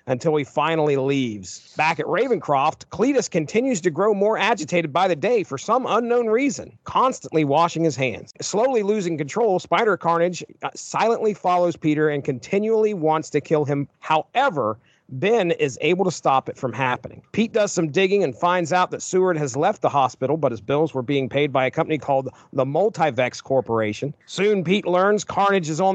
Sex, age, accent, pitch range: male, 40-59, American, 145-190 Hz